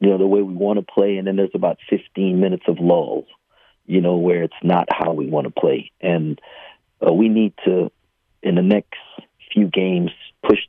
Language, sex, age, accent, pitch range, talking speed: English, male, 40-59, American, 90-105 Hz, 210 wpm